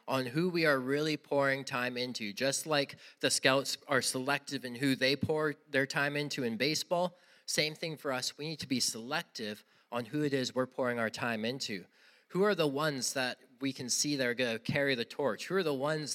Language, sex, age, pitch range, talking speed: English, male, 20-39, 130-155 Hz, 220 wpm